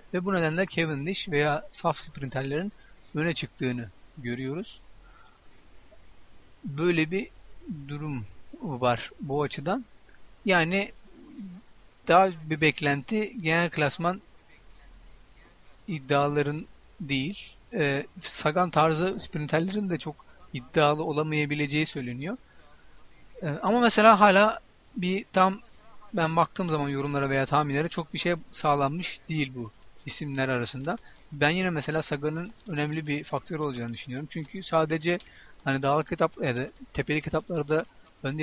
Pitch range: 145-180 Hz